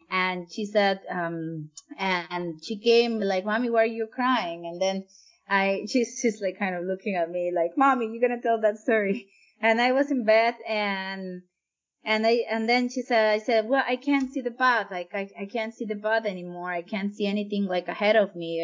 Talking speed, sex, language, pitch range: 220 wpm, female, English, 185-230 Hz